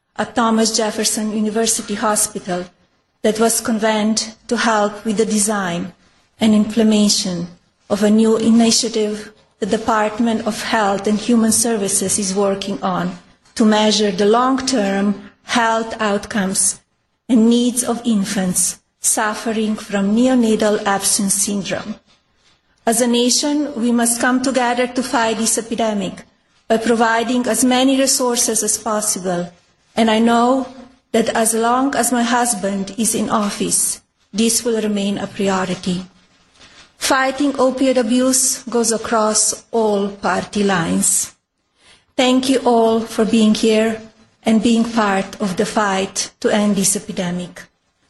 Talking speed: 130 wpm